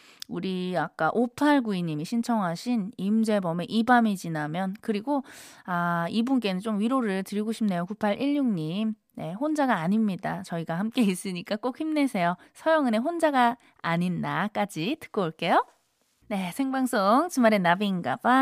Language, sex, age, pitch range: Korean, female, 20-39, 195-275 Hz